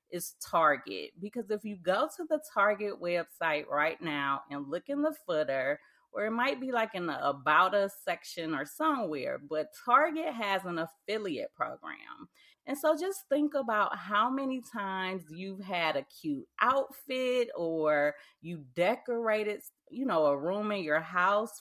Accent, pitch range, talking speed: American, 170-255 Hz, 160 wpm